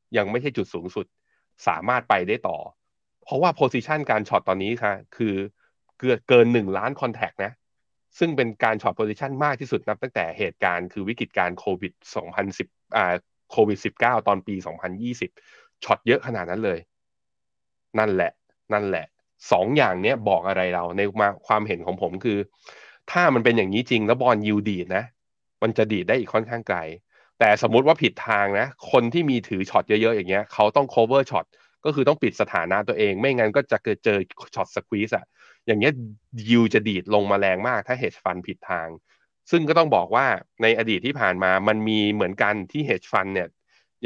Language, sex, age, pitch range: Thai, male, 20-39, 95-120 Hz